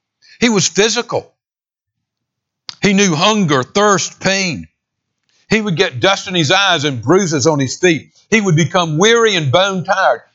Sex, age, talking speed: male, 60-79, 155 wpm